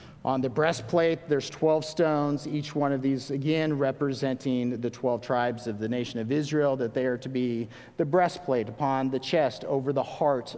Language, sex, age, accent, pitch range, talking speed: English, male, 50-69, American, 125-160 Hz, 185 wpm